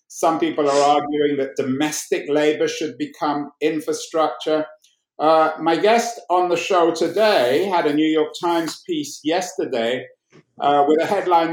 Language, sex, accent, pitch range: English, male, British, 150-205 Hz